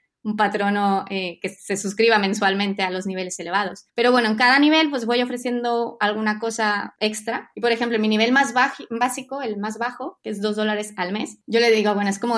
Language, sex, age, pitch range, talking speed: Spanish, female, 20-39, 195-230 Hz, 220 wpm